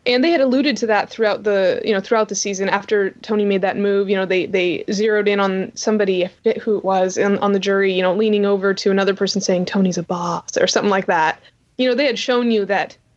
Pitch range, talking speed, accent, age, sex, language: 195-235 Hz, 260 wpm, American, 20-39, female, English